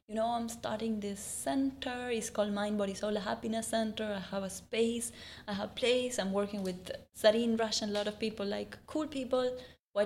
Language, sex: English, female